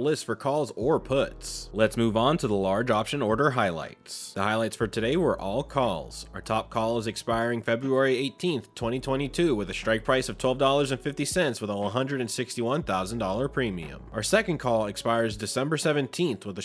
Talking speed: 170 wpm